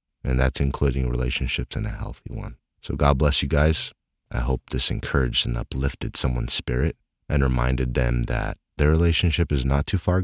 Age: 30-49